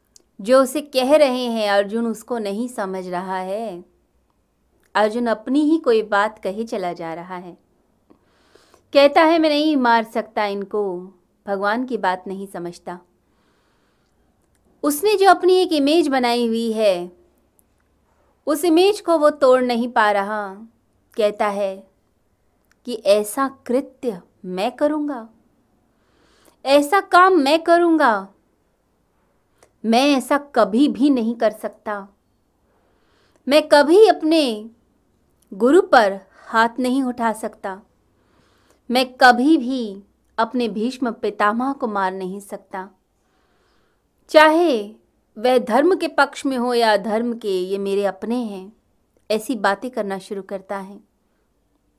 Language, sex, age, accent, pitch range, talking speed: Hindi, female, 30-49, native, 200-275 Hz, 120 wpm